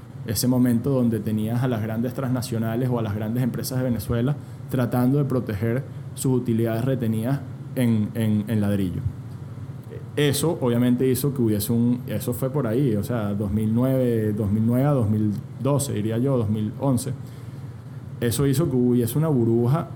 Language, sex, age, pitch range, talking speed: Spanish, male, 20-39, 120-135 Hz, 145 wpm